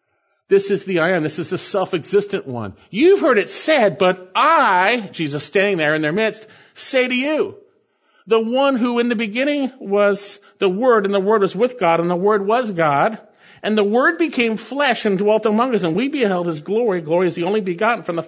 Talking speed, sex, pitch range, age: 215 wpm, male, 180-255 Hz, 50-69